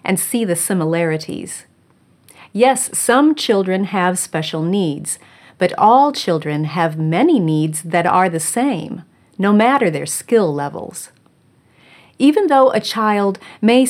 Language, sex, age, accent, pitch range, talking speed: English, female, 40-59, American, 170-230 Hz, 130 wpm